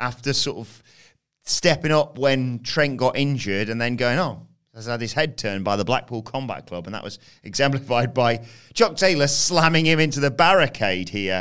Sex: male